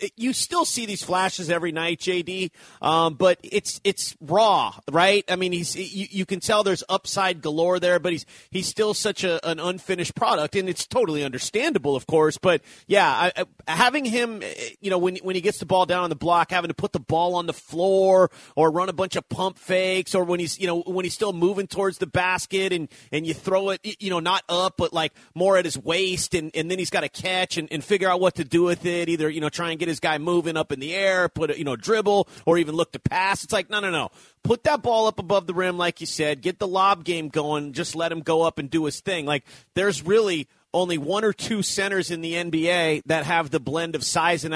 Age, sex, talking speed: 30-49, male, 250 wpm